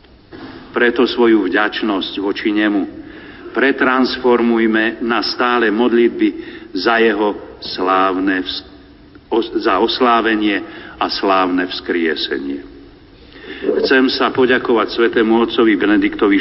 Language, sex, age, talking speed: Slovak, male, 50-69, 90 wpm